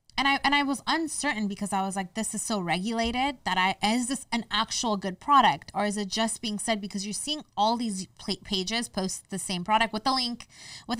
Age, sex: 20-39, female